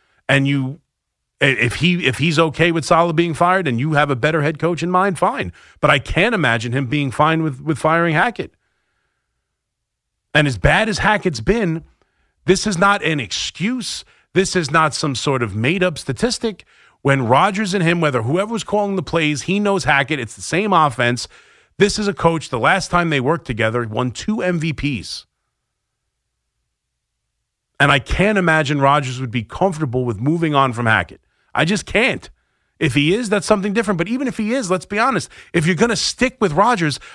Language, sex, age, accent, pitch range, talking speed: English, male, 30-49, American, 135-185 Hz, 190 wpm